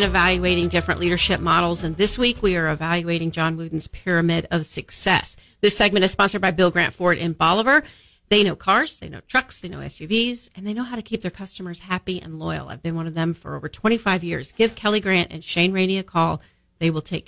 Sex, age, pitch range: female, 40-59, 170-210 Hz